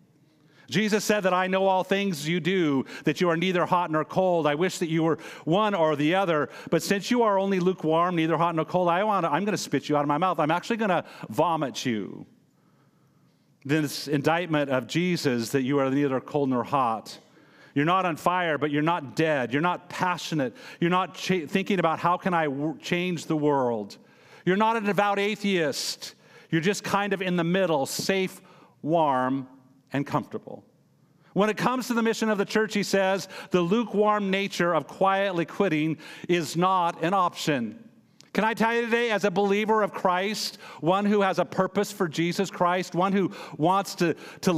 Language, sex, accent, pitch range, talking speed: English, male, American, 160-200 Hz, 195 wpm